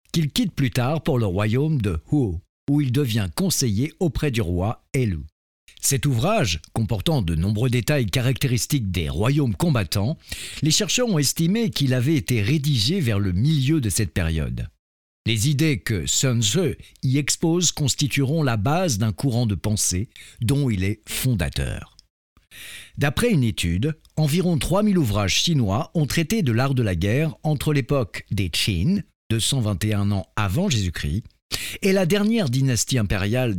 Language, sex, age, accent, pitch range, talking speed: French, male, 60-79, French, 100-150 Hz, 155 wpm